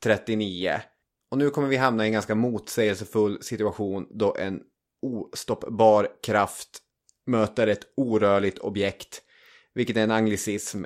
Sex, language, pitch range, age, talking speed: male, English, 100-115 Hz, 20-39, 125 wpm